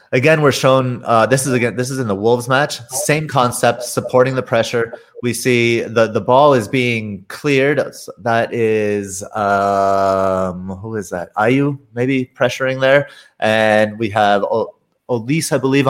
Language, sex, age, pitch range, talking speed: English, male, 30-49, 105-130 Hz, 160 wpm